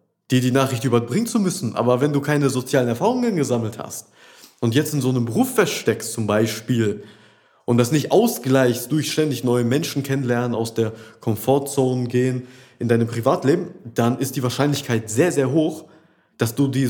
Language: German